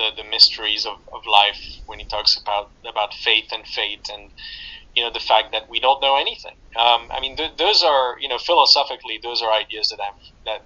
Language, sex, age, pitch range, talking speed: English, male, 30-49, 105-120 Hz, 220 wpm